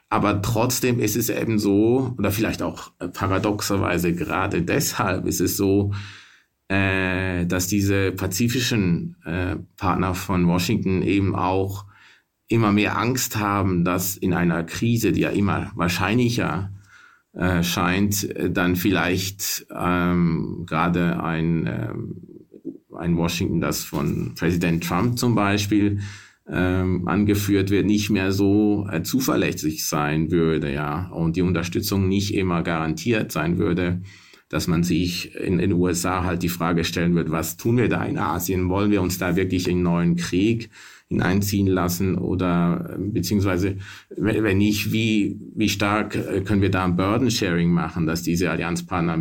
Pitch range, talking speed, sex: 85-105 Hz, 130 wpm, male